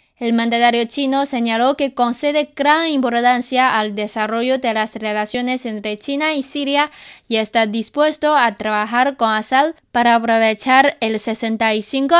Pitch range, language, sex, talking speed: 225-275 Hz, Spanish, female, 140 wpm